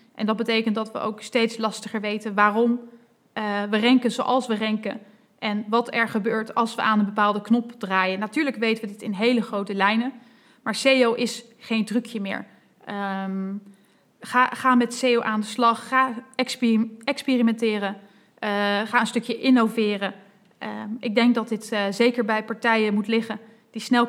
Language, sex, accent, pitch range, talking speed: Dutch, female, Dutch, 215-240 Hz, 165 wpm